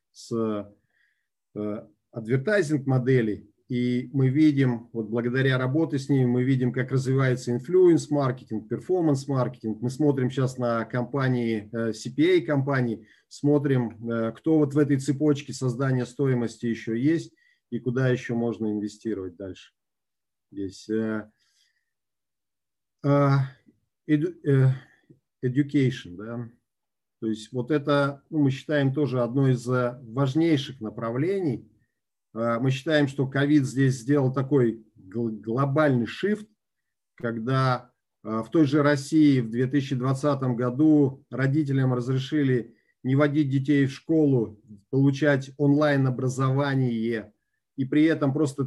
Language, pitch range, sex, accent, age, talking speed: Russian, 120-145 Hz, male, native, 40-59, 110 wpm